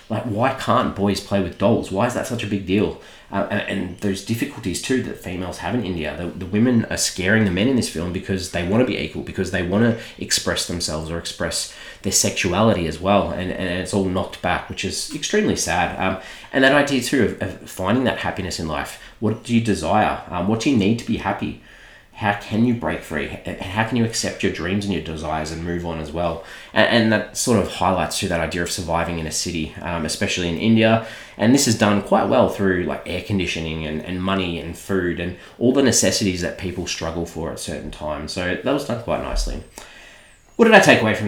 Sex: male